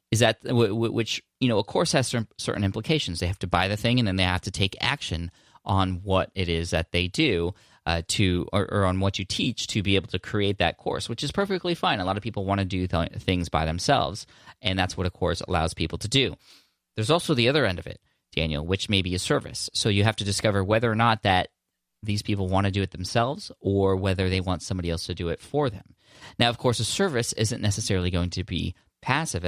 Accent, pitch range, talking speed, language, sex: American, 95-120 Hz, 245 wpm, English, male